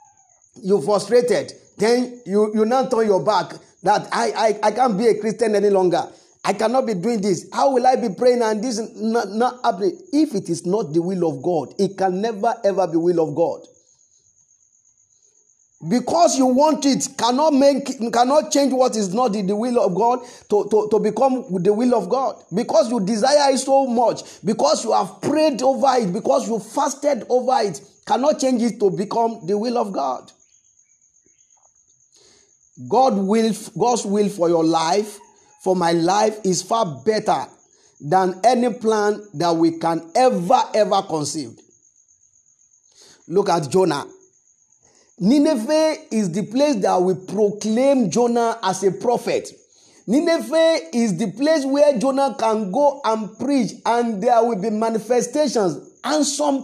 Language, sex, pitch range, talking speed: English, male, 195-265 Hz, 160 wpm